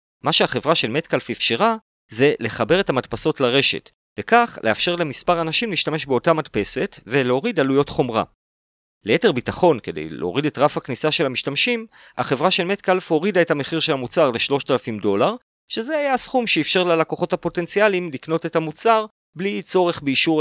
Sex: male